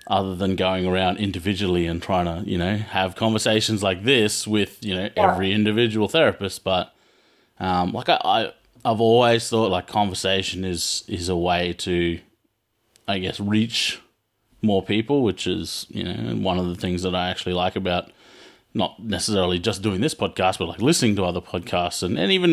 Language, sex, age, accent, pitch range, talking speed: English, male, 30-49, Australian, 90-110 Hz, 180 wpm